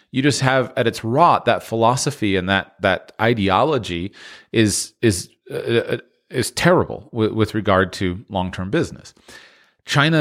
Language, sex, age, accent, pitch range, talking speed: English, male, 40-59, American, 105-130 Hz, 140 wpm